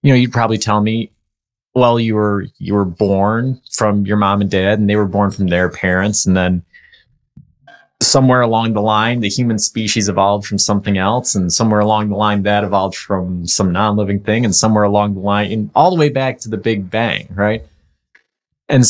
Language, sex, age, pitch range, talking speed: English, male, 30-49, 100-115 Hz, 205 wpm